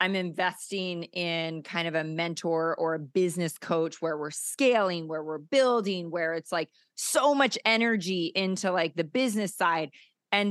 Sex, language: female, English